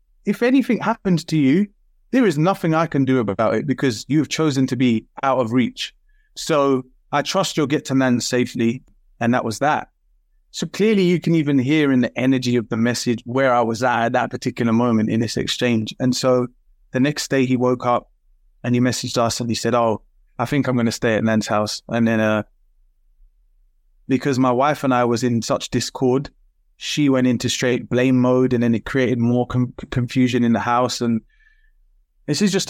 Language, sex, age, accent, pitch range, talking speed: English, male, 20-39, British, 120-150 Hz, 210 wpm